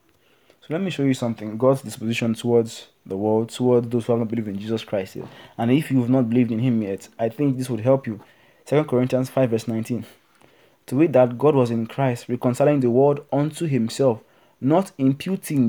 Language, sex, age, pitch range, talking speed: English, male, 20-39, 120-145 Hz, 205 wpm